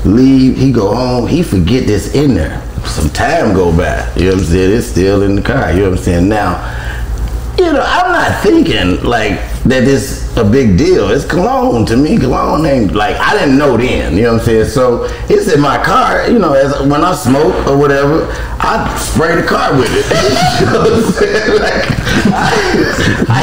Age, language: 40-59, English